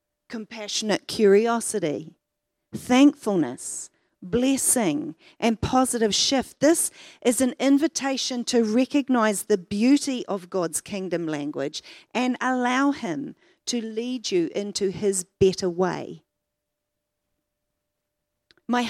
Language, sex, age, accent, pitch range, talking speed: English, female, 40-59, Australian, 205-270 Hz, 95 wpm